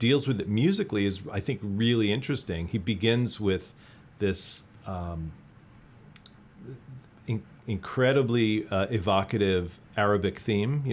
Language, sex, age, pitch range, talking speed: English, male, 40-59, 100-125 Hz, 115 wpm